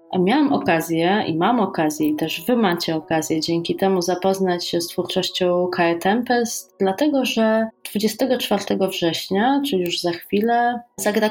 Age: 20-39